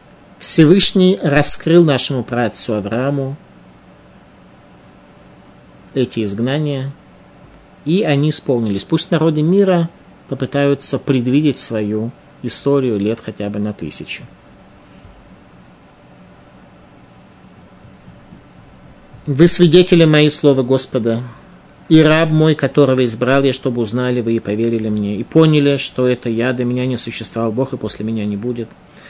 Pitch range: 120-160 Hz